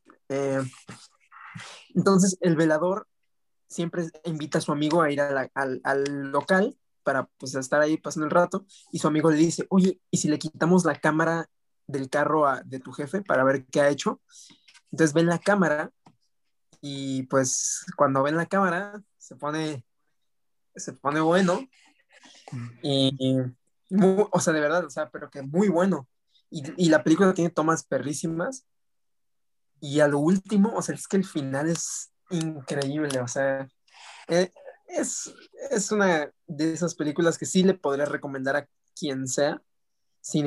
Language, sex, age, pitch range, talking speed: Spanish, male, 20-39, 140-180 Hz, 165 wpm